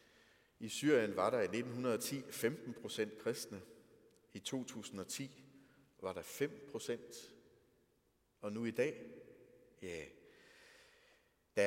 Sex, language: male, Danish